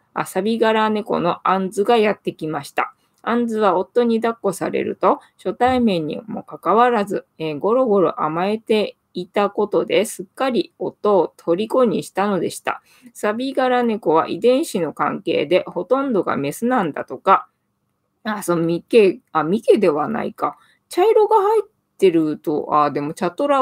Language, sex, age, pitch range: Japanese, female, 20-39, 180-245 Hz